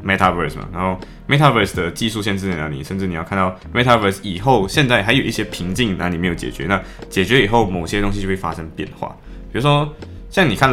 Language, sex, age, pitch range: Chinese, male, 20-39, 90-115 Hz